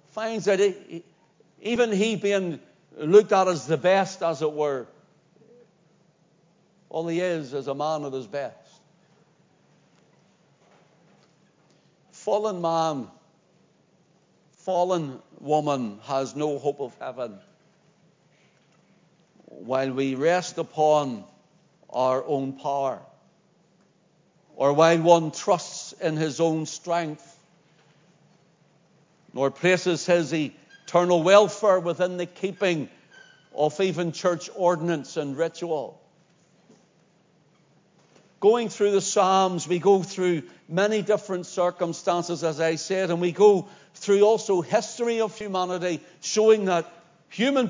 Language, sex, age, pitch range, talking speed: English, male, 60-79, 160-195 Hz, 105 wpm